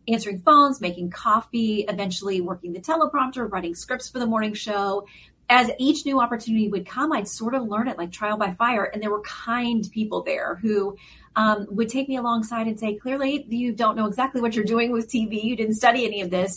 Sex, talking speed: female, 215 wpm